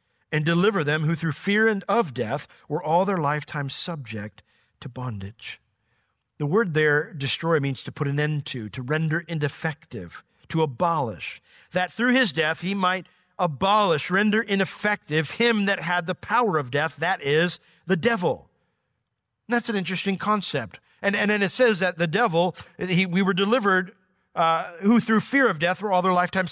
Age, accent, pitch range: 50-69, American, 145-205 Hz